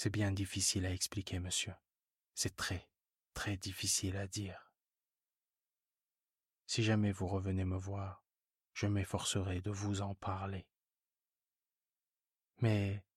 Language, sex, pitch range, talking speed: French, male, 95-105 Hz, 115 wpm